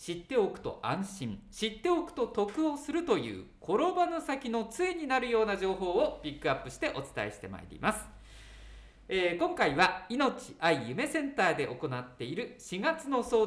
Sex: male